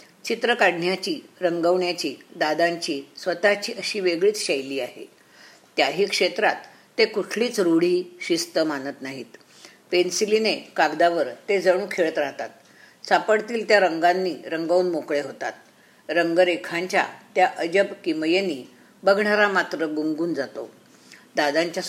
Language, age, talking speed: Marathi, 50-69, 105 wpm